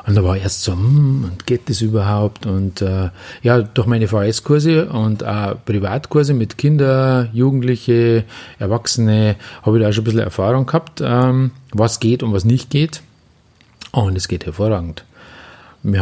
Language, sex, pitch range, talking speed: German, male, 105-130 Hz, 170 wpm